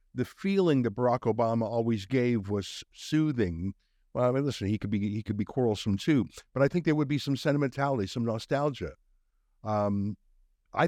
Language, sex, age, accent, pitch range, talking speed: English, male, 50-69, American, 105-135 Hz, 180 wpm